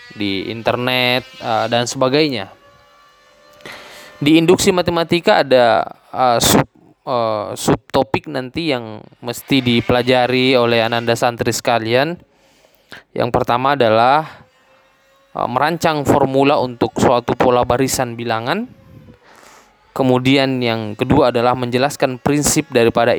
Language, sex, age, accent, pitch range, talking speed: Indonesian, male, 10-29, native, 115-140 Hz, 100 wpm